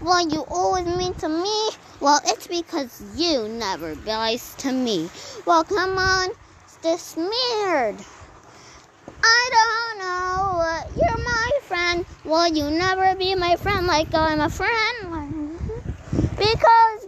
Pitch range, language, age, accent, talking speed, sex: 325-380 Hz, English, 20-39, American, 125 wpm, female